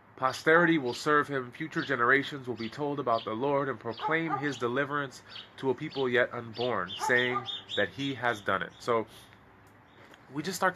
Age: 20-39